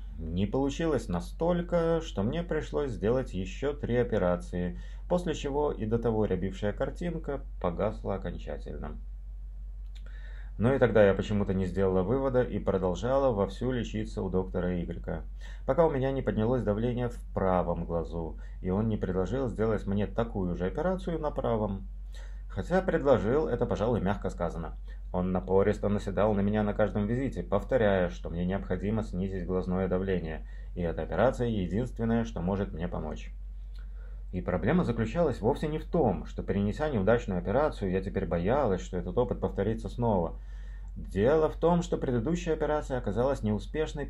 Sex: male